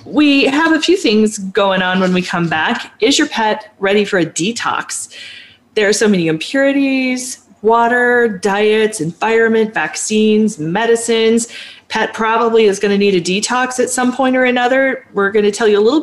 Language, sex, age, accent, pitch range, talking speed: English, female, 30-49, American, 190-235 Hz, 180 wpm